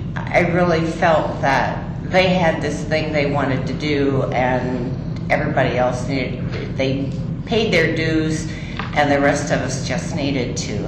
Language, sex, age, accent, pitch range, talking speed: English, female, 50-69, American, 145-170 Hz, 155 wpm